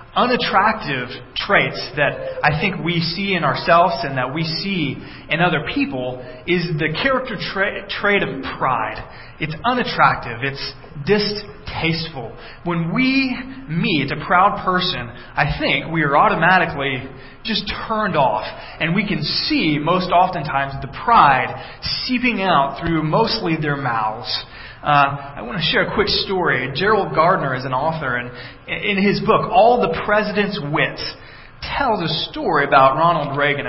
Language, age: English, 20-39